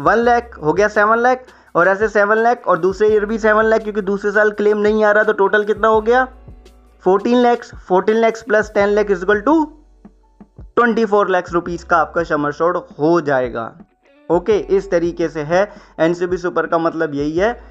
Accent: native